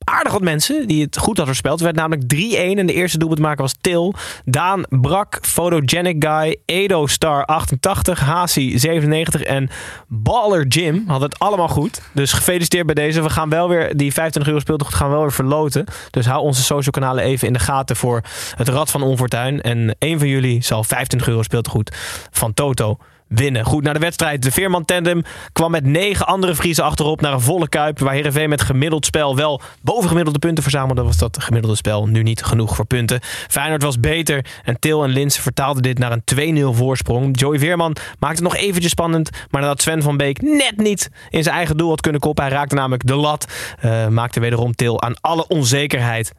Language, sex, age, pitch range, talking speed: Dutch, male, 20-39, 125-165 Hz, 205 wpm